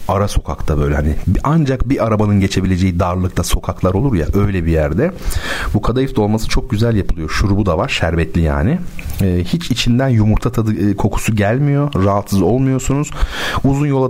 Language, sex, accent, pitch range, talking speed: Turkish, male, native, 90-120 Hz, 160 wpm